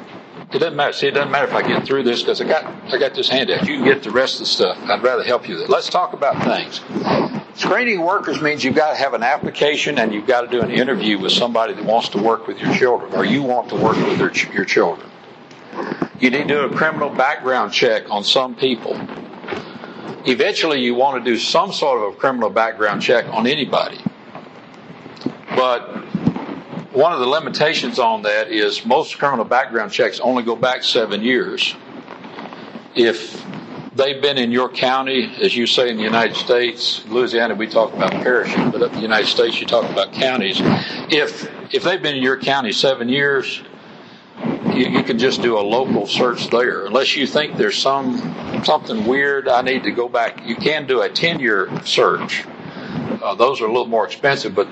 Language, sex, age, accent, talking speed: English, male, 60-79, American, 200 wpm